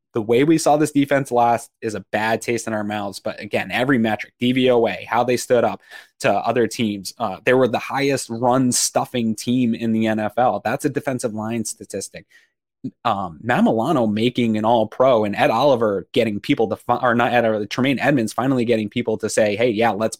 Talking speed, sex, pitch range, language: 210 wpm, male, 110-125 Hz, English